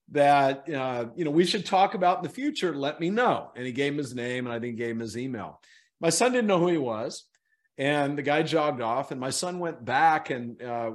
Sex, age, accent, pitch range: male, 50-69, American, 135-175 Hz